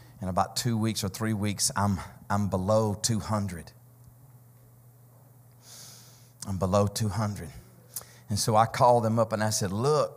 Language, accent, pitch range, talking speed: English, American, 105-125 Hz, 140 wpm